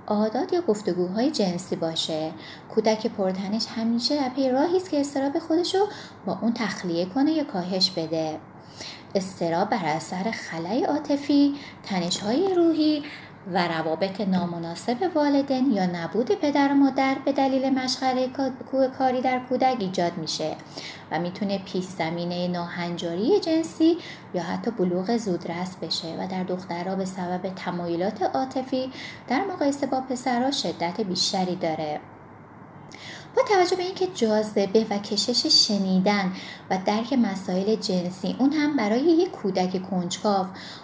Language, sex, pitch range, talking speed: Persian, female, 180-265 Hz, 130 wpm